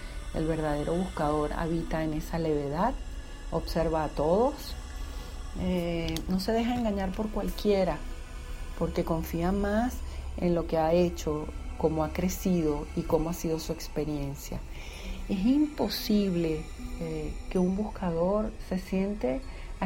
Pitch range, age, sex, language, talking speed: 150-180 Hz, 40-59, female, Spanish, 130 wpm